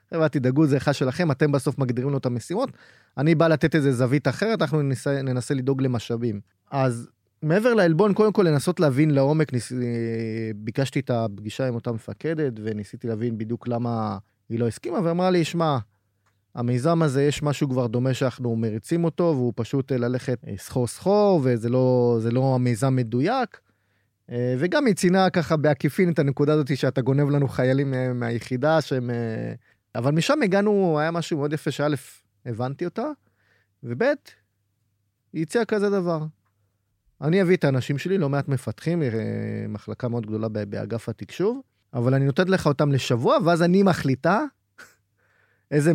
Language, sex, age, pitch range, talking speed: Hebrew, male, 20-39, 115-155 Hz, 145 wpm